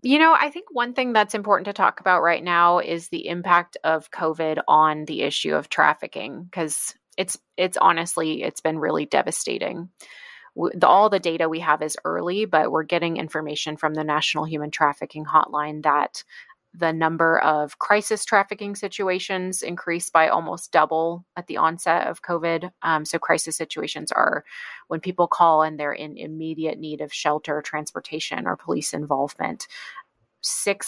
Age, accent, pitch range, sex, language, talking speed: 30-49, American, 155-180 Hz, female, English, 165 wpm